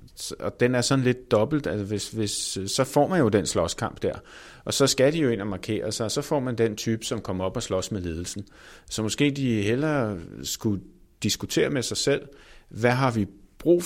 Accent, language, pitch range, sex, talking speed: native, Danish, 95-120 Hz, male, 220 wpm